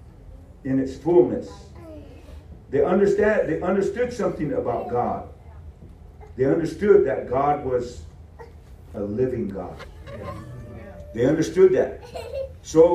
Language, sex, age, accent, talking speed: English, male, 50-69, American, 100 wpm